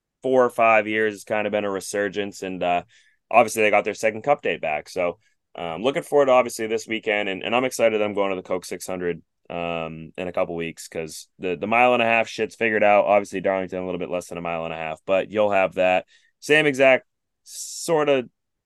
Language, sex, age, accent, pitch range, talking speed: English, male, 20-39, American, 95-125 Hz, 240 wpm